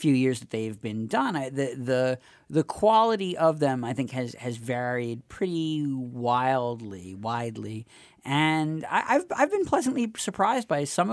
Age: 40-59